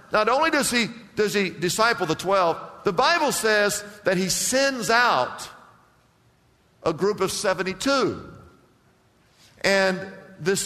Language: English